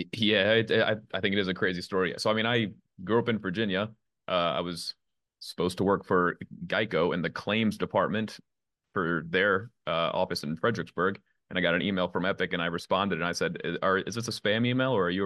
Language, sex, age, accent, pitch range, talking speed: English, male, 30-49, American, 90-105 Hz, 220 wpm